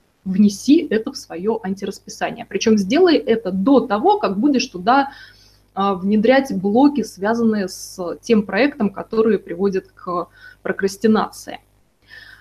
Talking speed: 110 wpm